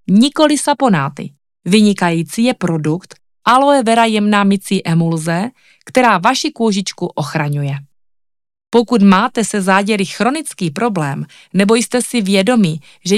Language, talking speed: Czech, 110 wpm